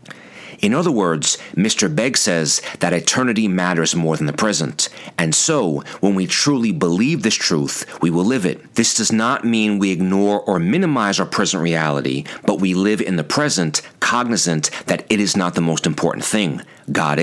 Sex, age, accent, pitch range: male, 40-59, American, 85-105 Hz